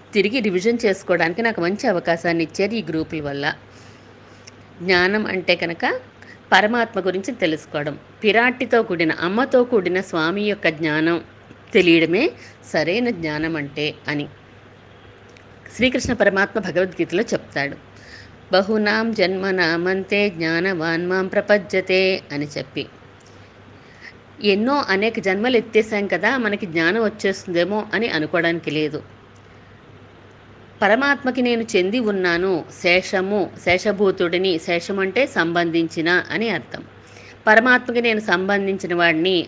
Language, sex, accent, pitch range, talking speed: Telugu, female, native, 155-210 Hz, 95 wpm